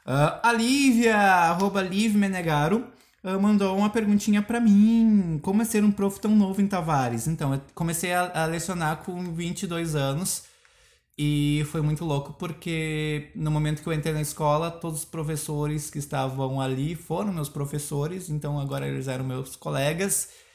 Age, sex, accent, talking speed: 20-39, male, Brazilian, 165 wpm